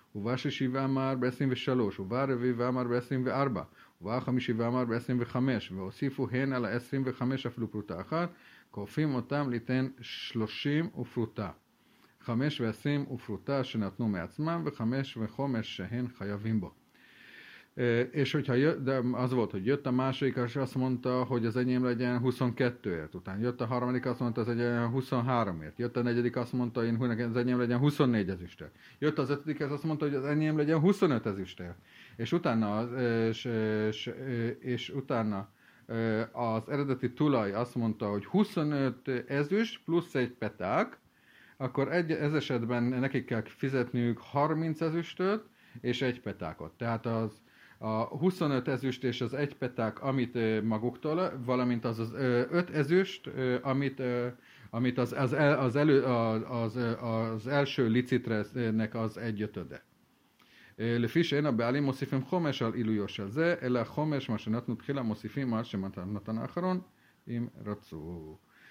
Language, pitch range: Hungarian, 115-135 Hz